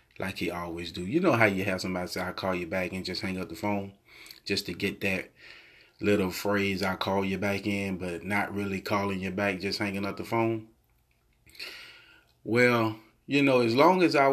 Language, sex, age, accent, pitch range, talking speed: English, male, 30-49, American, 95-110 Hz, 210 wpm